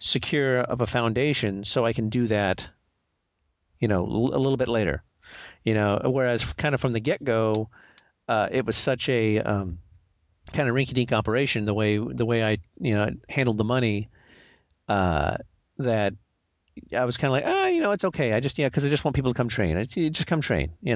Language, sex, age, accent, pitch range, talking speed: English, male, 40-59, American, 100-130 Hz, 205 wpm